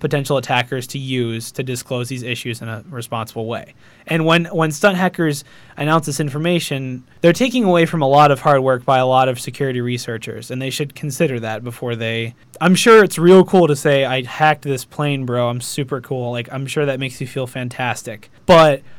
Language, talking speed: English, 210 wpm